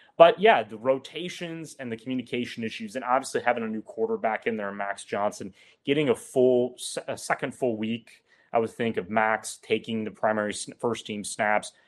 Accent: American